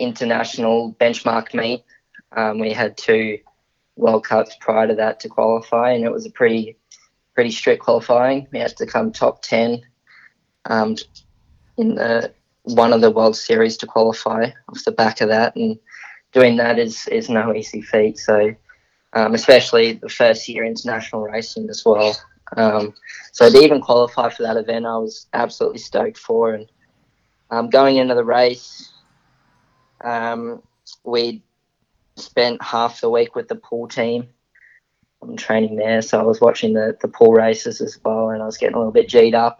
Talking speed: 170 wpm